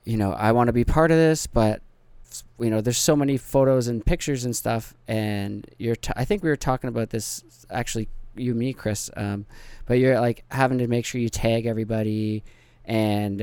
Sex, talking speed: male, 200 wpm